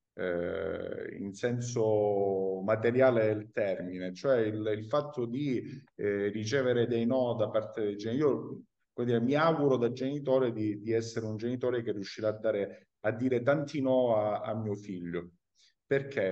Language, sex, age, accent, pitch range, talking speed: Italian, male, 50-69, native, 105-135 Hz, 160 wpm